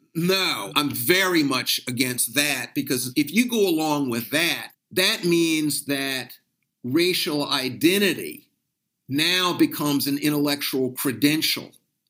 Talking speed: 115 wpm